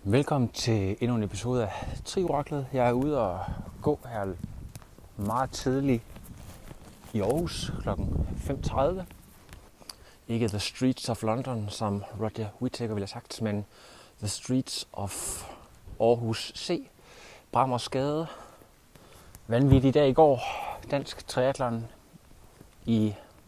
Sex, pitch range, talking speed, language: male, 105-125 Hz, 115 wpm, Danish